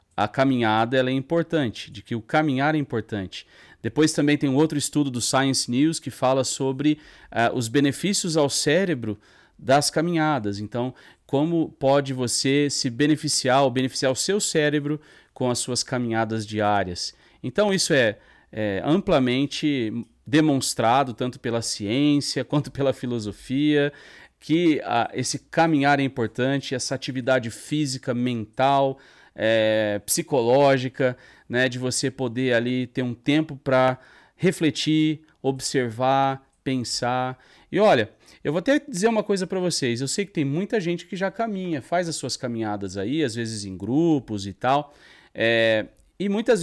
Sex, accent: male, Brazilian